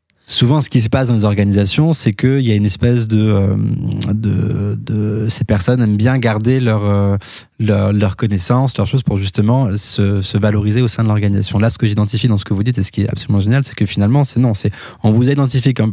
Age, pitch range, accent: 20-39, 105-125 Hz, French